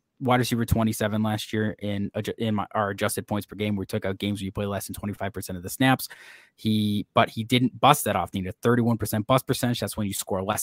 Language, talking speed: English, 255 wpm